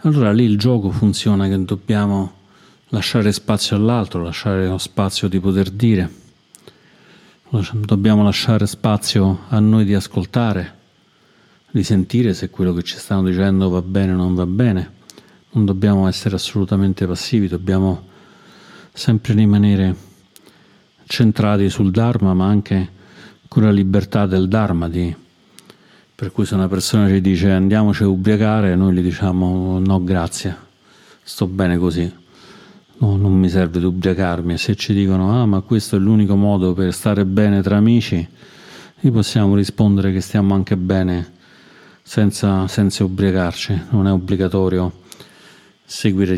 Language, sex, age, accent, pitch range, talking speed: Italian, male, 40-59, native, 95-105 Hz, 140 wpm